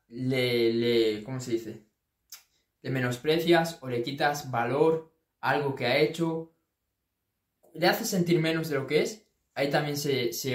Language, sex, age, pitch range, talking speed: Spanish, male, 20-39, 120-155 Hz, 160 wpm